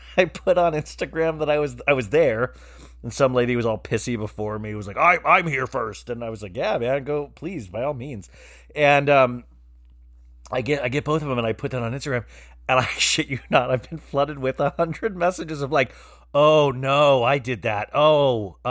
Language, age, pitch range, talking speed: English, 30-49, 110-145 Hz, 230 wpm